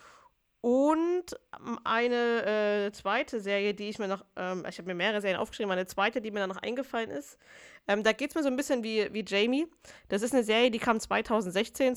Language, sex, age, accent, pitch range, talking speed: German, female, 20-39, German, 195-235 Hz, 210 wpm